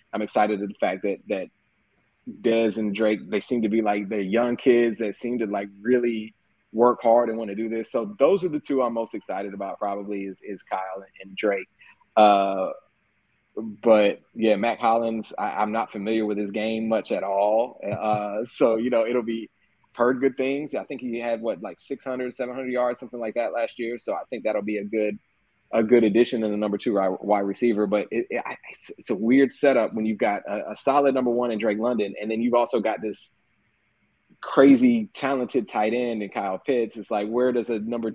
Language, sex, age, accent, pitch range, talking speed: English, male, 20-39, American, 105-120 Hz, 215 wpm